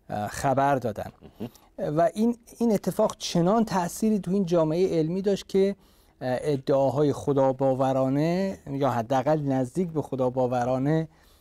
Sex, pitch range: male, 120-155 Hz